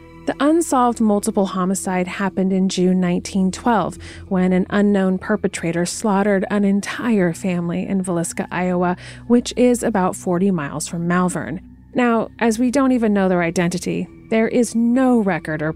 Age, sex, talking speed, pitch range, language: 30-49, female, 150 wpm, 175-225 Hz, English